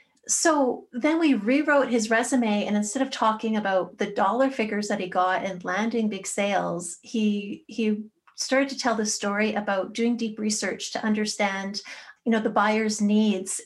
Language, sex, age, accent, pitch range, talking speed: English, female, 30-49, American, 205-255 Hz, 170 wpm